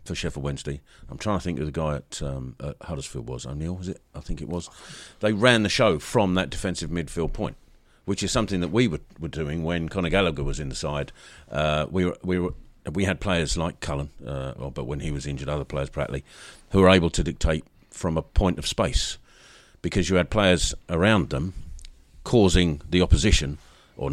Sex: male